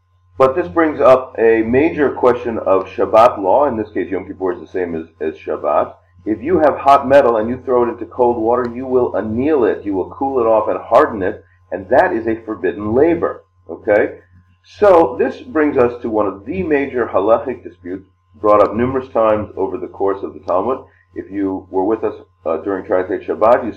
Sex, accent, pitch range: male, American, 95-135 Hz